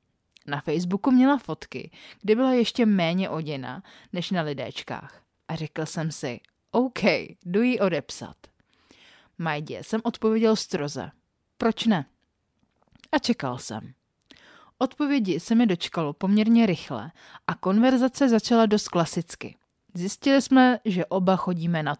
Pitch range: 165-230 Hz